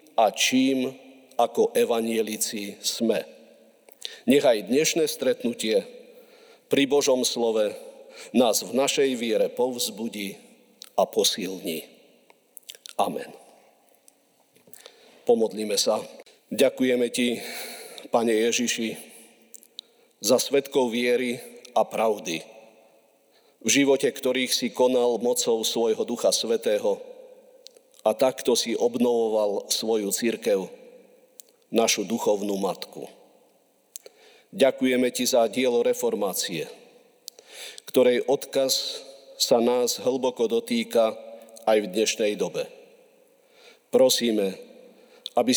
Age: 50-69